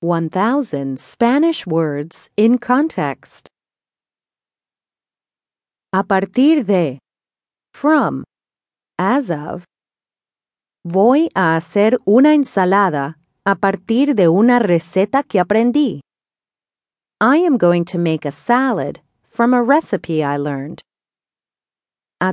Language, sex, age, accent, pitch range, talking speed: English, female, 40-59, American, 170-245 Hz, 95 wpm